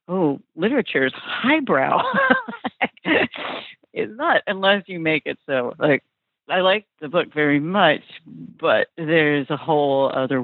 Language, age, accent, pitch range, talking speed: English, 50-69, American, 135-160 Hz, 130 wpm